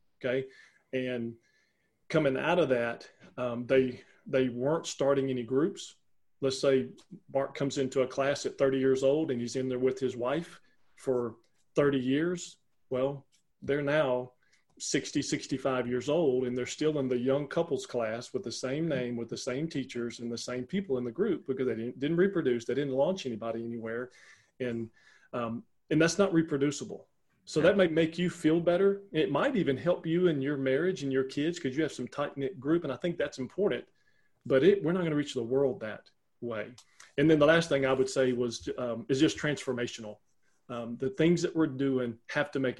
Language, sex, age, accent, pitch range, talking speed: English, male, 40-59, American, 125-150 Hz, 200 wpm